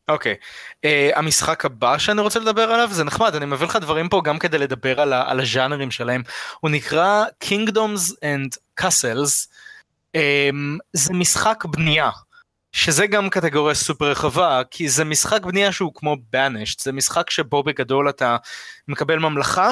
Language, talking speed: Hebrew, 160 wpm